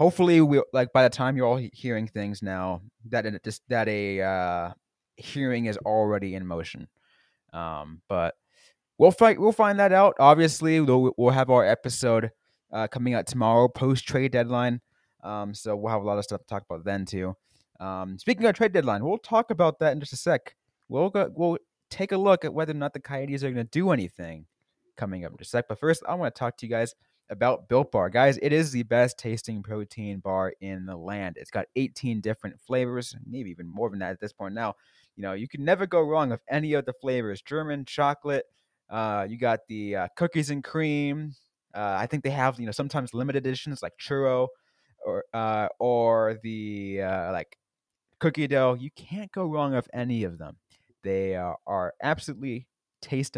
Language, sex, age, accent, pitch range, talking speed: English, male, 20-39, American, 105-145 Hz, 205 wpm